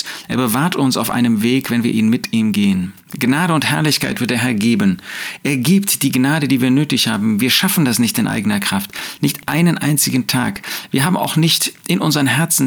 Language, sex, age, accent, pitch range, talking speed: German, male, 40-59, German, 125-165 Hz, 215 wpm